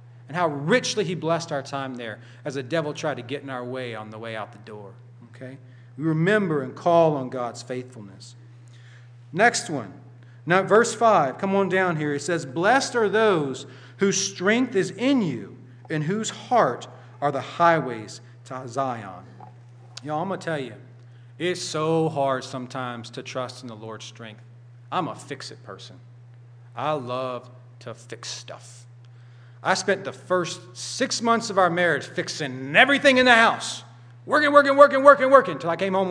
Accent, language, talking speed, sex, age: American, English, 175 wpm, male, 40-59